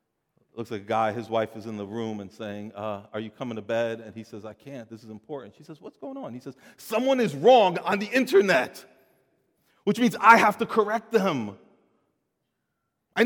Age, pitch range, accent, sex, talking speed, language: 40-59, 110-155 Hz, American, male, 215 wpm, English